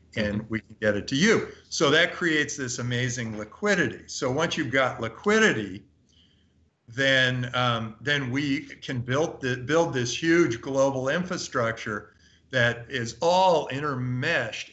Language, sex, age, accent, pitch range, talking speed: English, male, 50-69, American, 110-140 Hz, 140 wpm